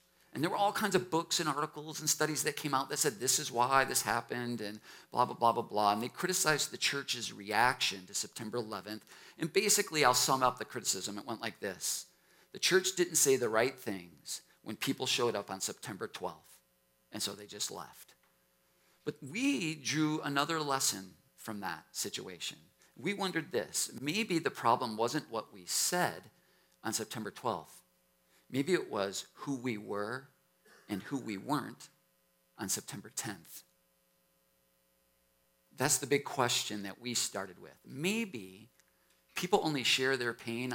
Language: English